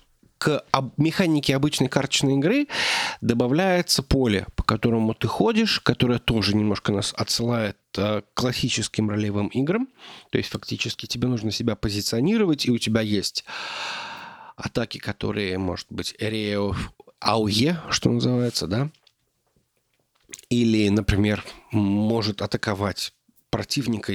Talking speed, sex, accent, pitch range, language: 110 wpm, male, native, 105-145 Hz, Russian